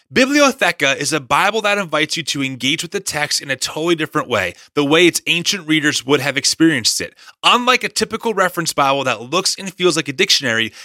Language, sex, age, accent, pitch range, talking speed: English, male, 30-49, American, 155-210 Hz, 210 wpm